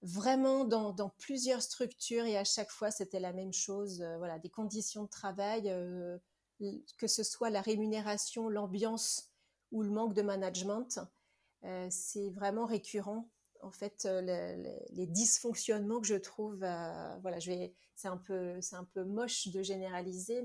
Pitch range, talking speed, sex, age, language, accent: 200-250 Hz, 170 wpm, female, 30-49, French, French